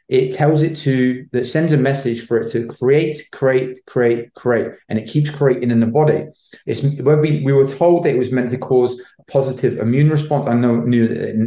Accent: British